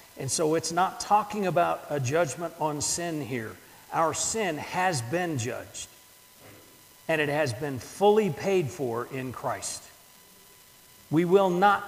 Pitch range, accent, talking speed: 125-165 Hz, American, 140 wpm